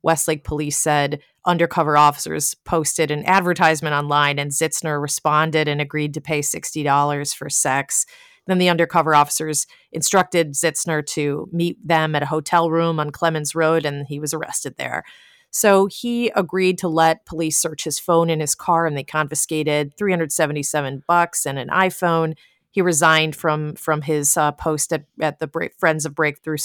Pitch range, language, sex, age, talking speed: 145-165 Hz, English, female, 30-49, 160 wpm